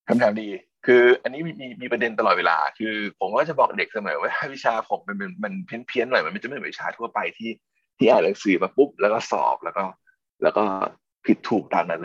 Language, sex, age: Thai, male, 20-39